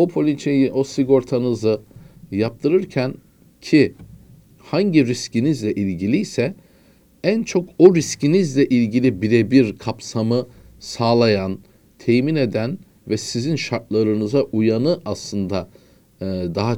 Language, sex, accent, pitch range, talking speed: Turkish, male, native, 100-135 Hz, 90 wpm